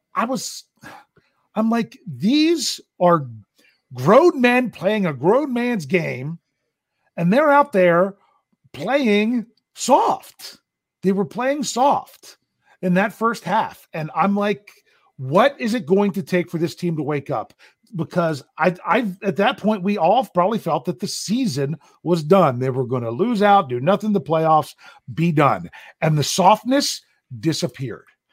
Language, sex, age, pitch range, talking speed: English, male, 40-59, 155-205 Hz, 155 wpm